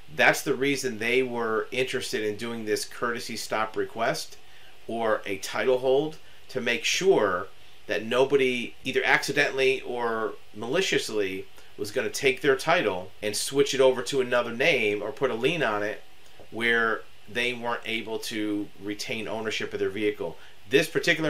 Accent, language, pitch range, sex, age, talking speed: American, English, 105-140 Hz, male, 40-59, 160 wpm